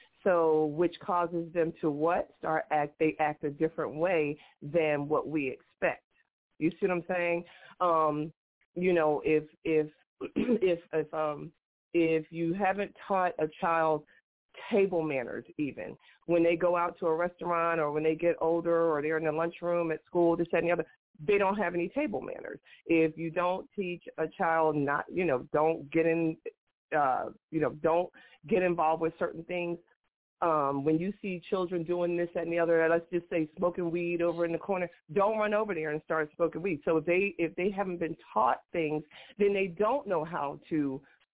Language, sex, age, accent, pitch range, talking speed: English, female, 40-59, American, 160-210 Hz, 190 wpm